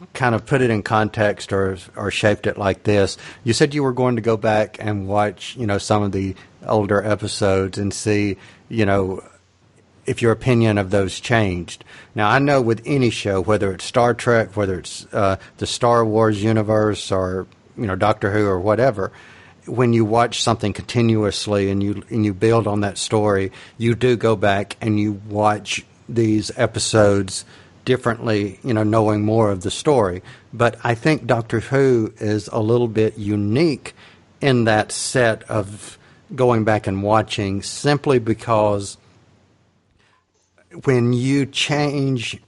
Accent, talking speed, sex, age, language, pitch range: American, 165 wpm, male, 50-69, English, 100-120 Hz